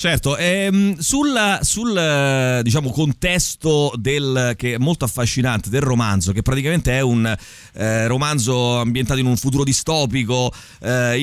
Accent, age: native, 30-49